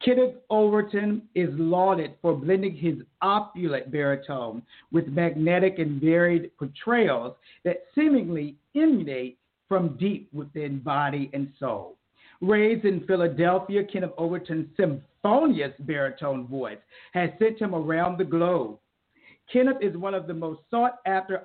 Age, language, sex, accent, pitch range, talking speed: 50-69, English, male, American, 160-200 Hz, 125 wpm